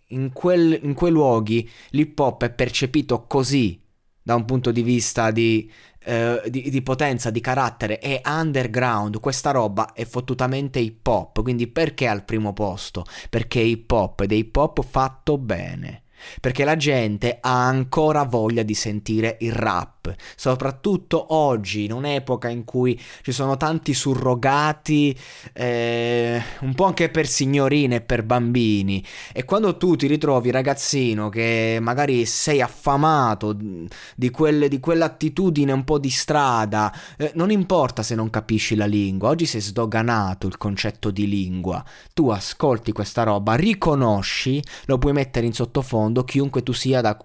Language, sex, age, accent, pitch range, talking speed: Italian, male, 20-39, native, 110-140 Hz, 155 wpm